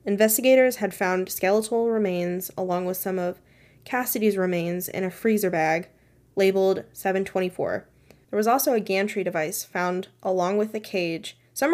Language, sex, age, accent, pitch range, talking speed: English, female, 10-29, American, 180-215 Hz, 150 wpm